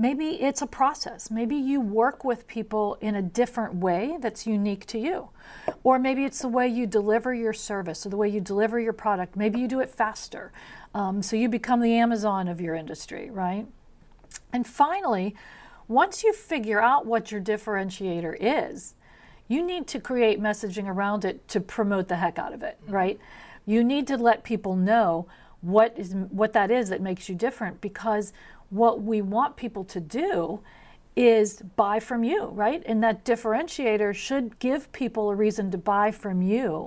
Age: 50-69